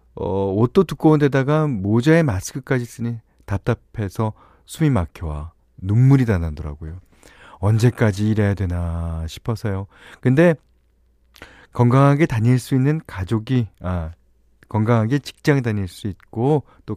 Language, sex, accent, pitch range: Korean, male, native, 90-135 Hz